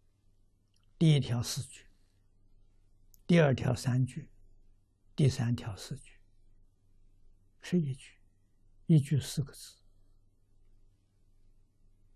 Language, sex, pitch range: Chinese, male, 100-120 Hz